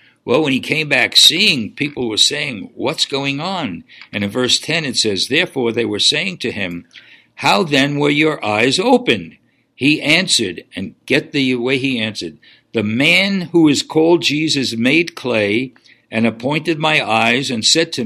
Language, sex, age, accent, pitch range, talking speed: English, male, 60-79, American, 110-155 Hz, 175 wpm